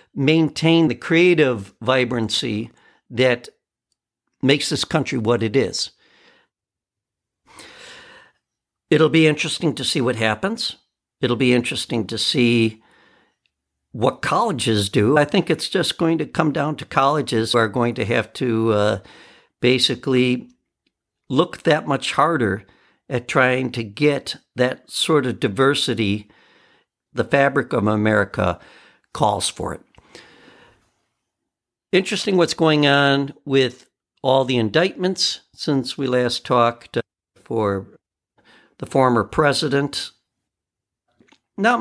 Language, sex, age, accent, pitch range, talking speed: English, male, 60-79, American, 115-150 Hz, 115 wpm